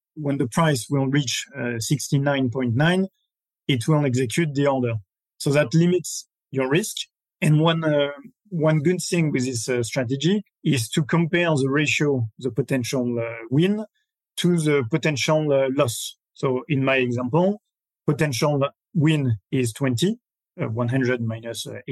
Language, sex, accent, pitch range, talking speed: English, male, French, 130-160 Hz, 145 wpm